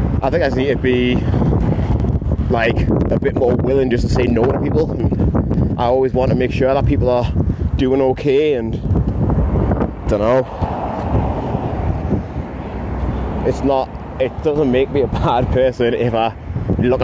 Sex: male